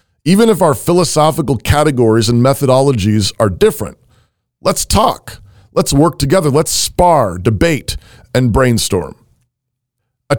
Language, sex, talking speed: English, male, 115 wpm